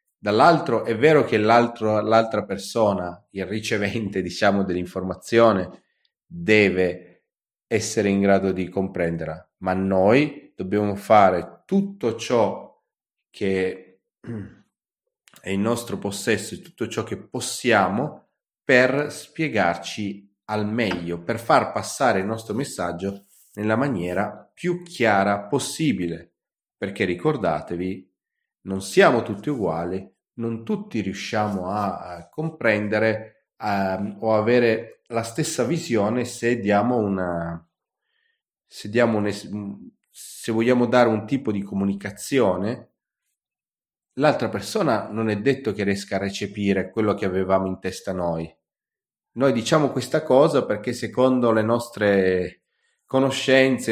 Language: Italian